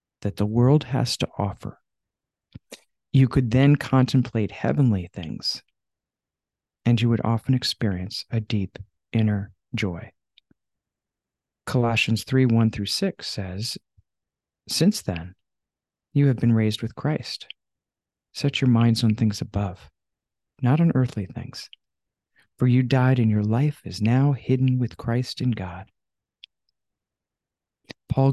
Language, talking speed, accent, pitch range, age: English, 125 wpm, American, 105-130 Hz, 40-59